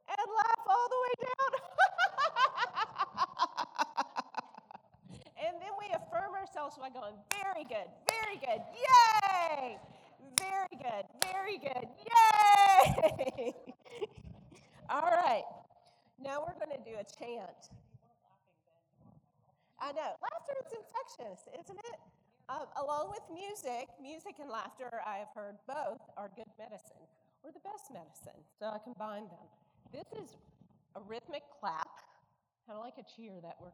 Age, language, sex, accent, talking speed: 40-59, English, female, American, 125 wpm